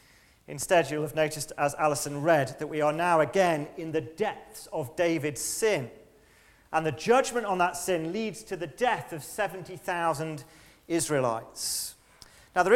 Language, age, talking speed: English, 40-59, 155 wpm